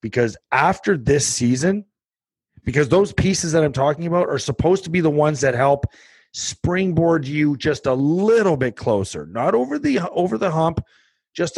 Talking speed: 170 wpm